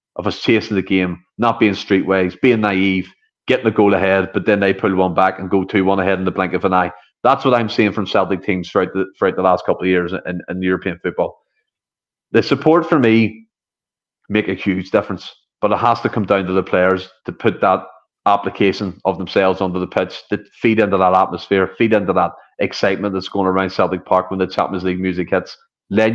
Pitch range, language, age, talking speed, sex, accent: 95-115 Hz, English, 30-49, 220 wpm, male, Irish